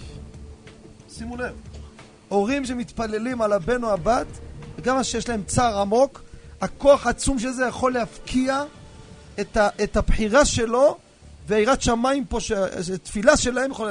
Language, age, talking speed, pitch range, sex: Hebrew, 40-59, 125 wpm, 170-235 Hz, male